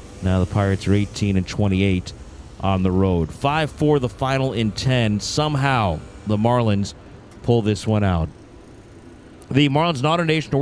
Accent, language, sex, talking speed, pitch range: American, English, male, 155 wpm, 105-140 Hz